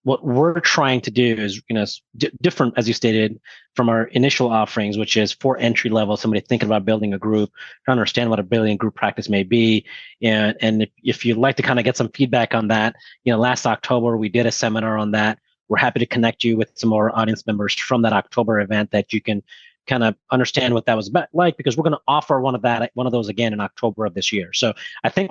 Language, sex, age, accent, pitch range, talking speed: English, male, 30-49, American, 110-130 Hz, 255 wpm